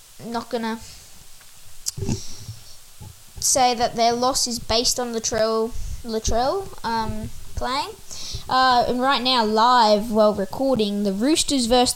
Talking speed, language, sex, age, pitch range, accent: 115 wpm, English, female, 10-29, 205-255 Hz, Australian